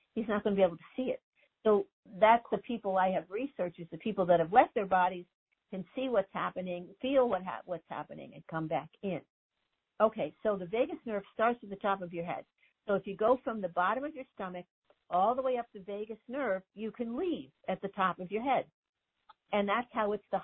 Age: 60-79